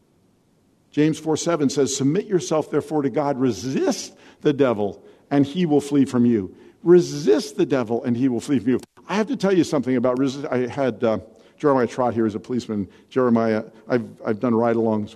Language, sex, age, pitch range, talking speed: English, male, 50-69, 120-175 Hz, 195 wpm